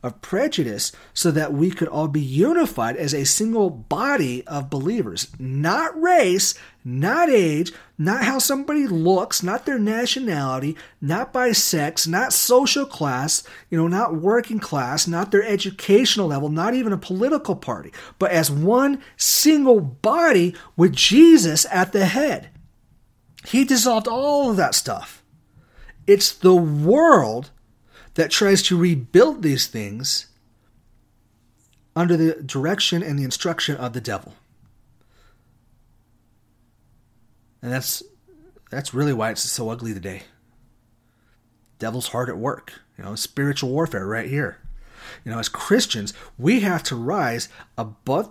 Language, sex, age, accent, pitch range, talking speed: English, male, 40-59, American, 120-195 Hz, 135 wpm